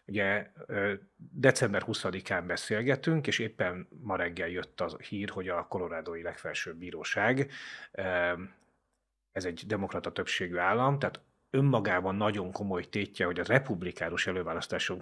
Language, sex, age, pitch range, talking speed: Hungarian, male, 30-49, 90-120 Hz, 120 wpm